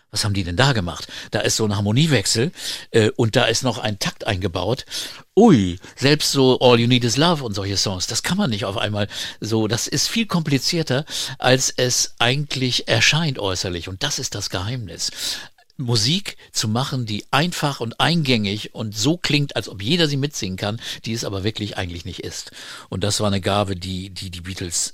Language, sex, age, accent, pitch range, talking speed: German, male, 60-79, German, 95-120 Hz, 200 wpm